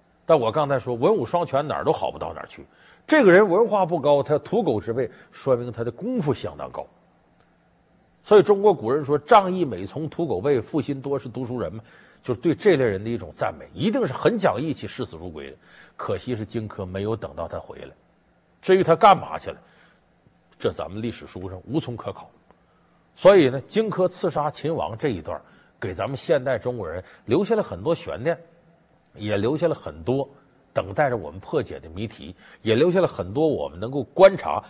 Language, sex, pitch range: Chinese, male, 105-165 Hz